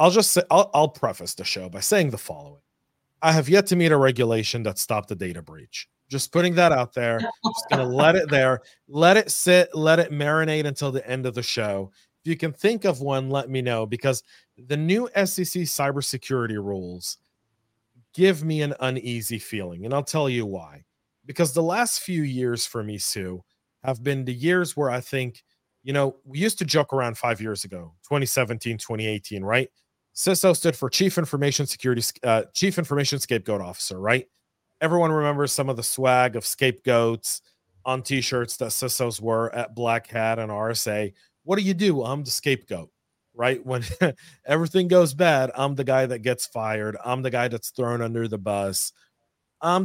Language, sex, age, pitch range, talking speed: English, male, 40-59, 115-150 Hz, 190 wpm